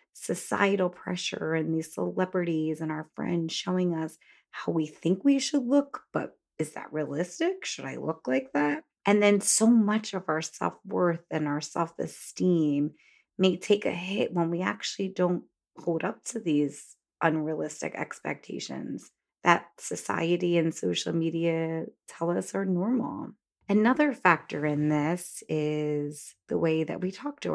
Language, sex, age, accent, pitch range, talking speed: English, female, 30-49, American, 155-195 Hz, 155 wpm